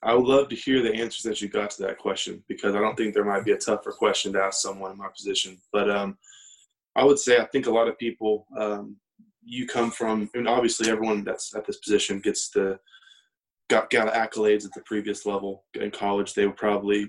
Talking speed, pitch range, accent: 230 wpm, 100-115 Hz, American